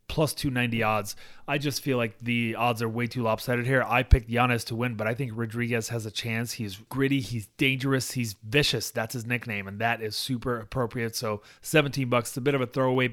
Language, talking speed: English, 225 wpm